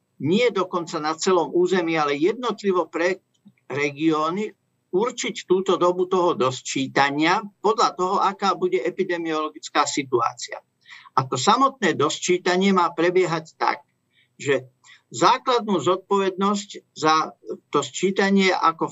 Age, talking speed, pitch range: 50-69, 110 wpm, 155-190 Hz